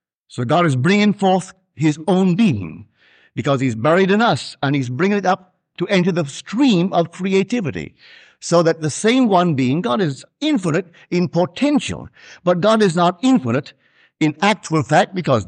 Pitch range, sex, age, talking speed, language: 140-190 Hz, male, 60-79, 170 wpm, English